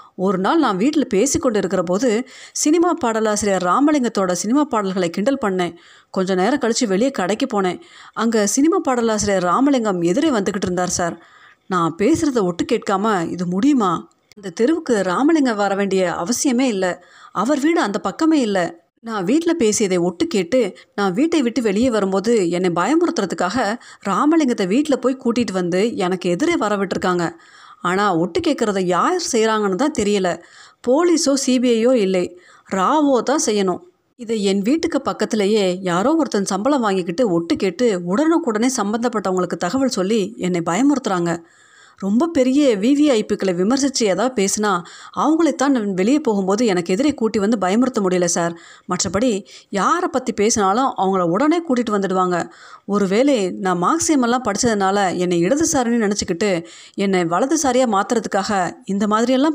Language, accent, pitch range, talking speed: Tamil, native, 190-265 Hz, 130 wpm